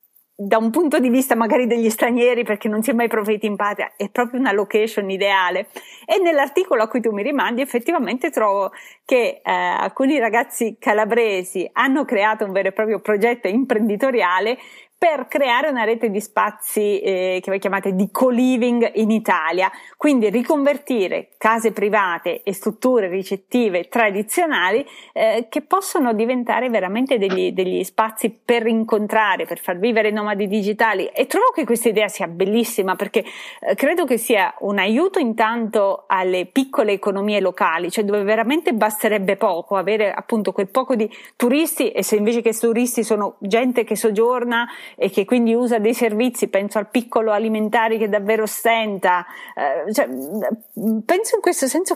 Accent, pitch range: native, 205-245 Hz